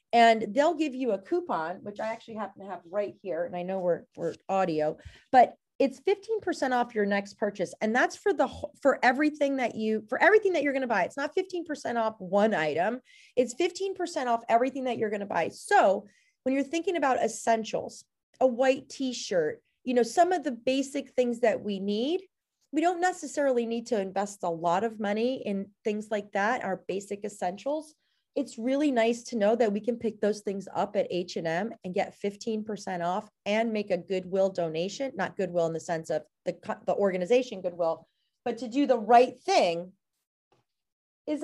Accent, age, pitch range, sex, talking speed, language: American, 30-49, 200-275 Hz, female, 195 wpm, English